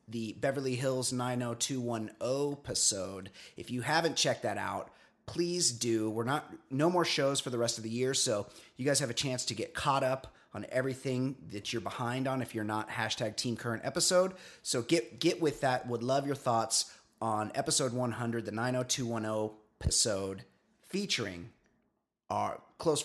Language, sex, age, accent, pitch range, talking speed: English, male, 30-49, American, 115-145 Hz, 170 wpm